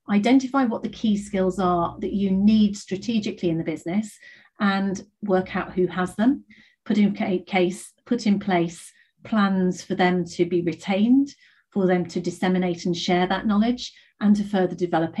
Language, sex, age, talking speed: English, female, 40-59, 170 wpm